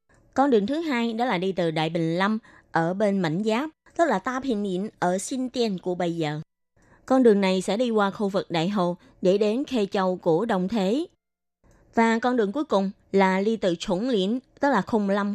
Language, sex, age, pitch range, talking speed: Vietnamese, female, 20-39, 180-225 Hz, 220 wpm